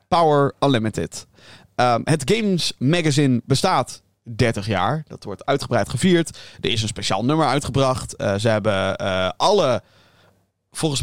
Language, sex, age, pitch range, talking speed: Dutch, male, 30-49, 115-160 Hz, 130 wpm